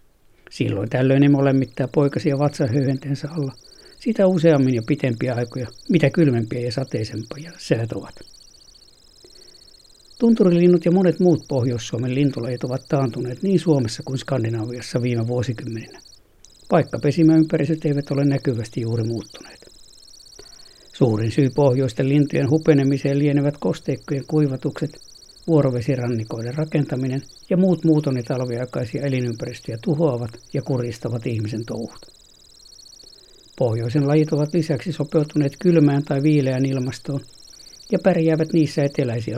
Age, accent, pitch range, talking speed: 60-79, native, 120-155 Hz, 105 wpm